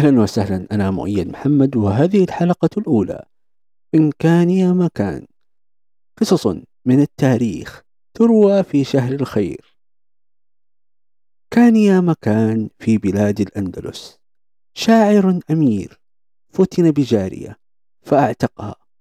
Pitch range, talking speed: 105-165 Hz, 95 wpm